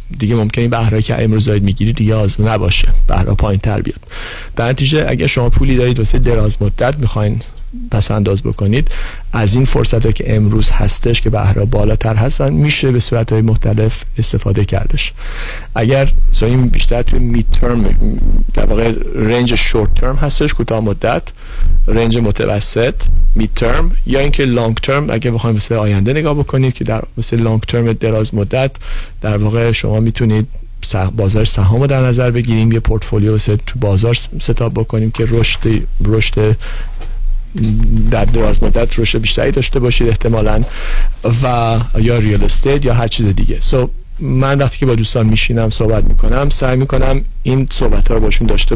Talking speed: 155 wpm